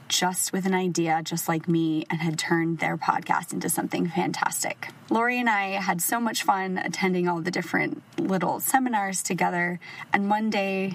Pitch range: 170-205 Hz